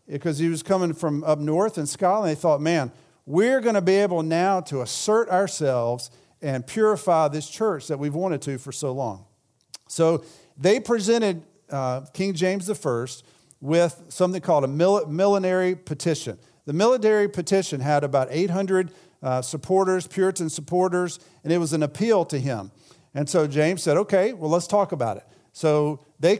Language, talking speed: English, 175 wpm